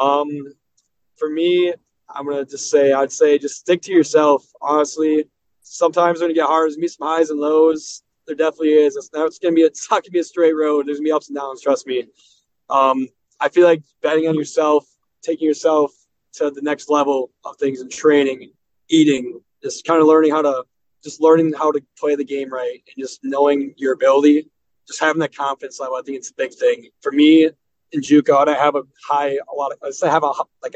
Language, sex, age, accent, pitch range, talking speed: English, male, 20-39, American, 140-155 Hz, 225 wpm